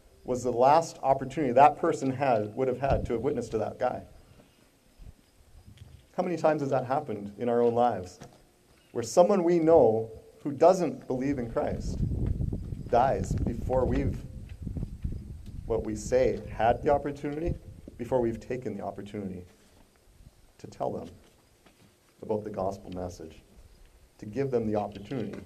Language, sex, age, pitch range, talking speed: English, male, 40-59, 95-130 Hz, 145 wpm